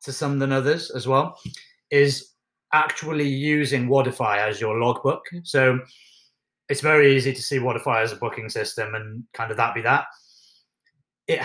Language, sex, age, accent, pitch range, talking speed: English, male, 30-49, British, 125-145 Hz, 170 wpm